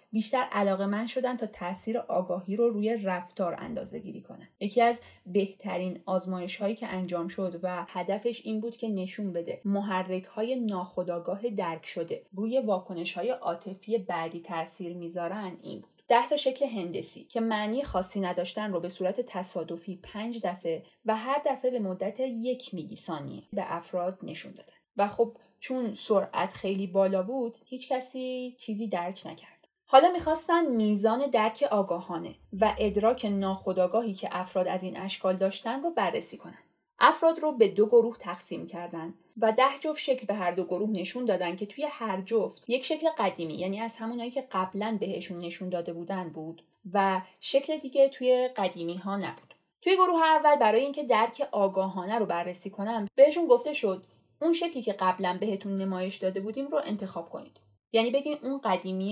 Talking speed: 170 wpm